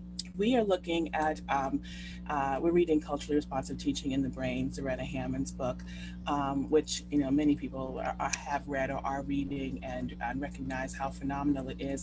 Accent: American